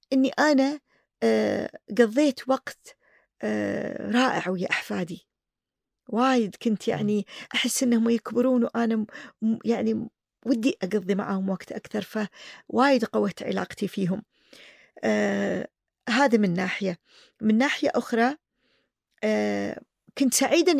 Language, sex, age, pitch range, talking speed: Arabic, female, 40-59, 190-250 Hz, 90 wpm